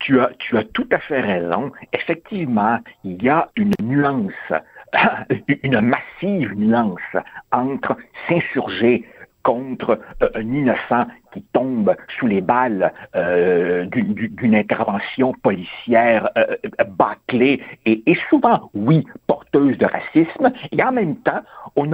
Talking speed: 125 wpm